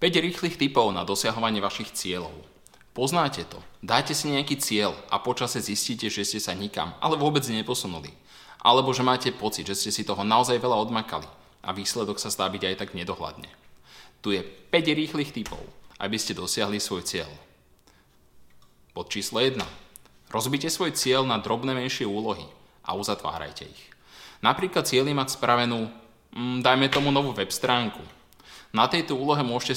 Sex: male